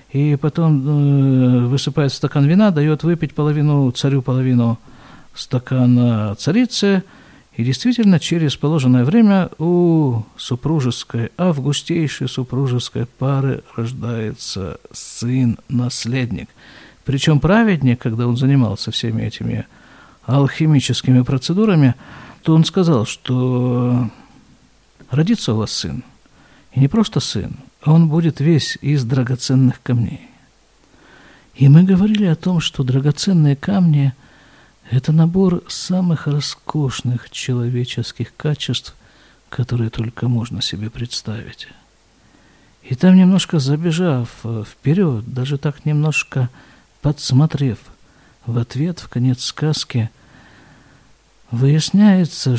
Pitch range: 120-155 Hz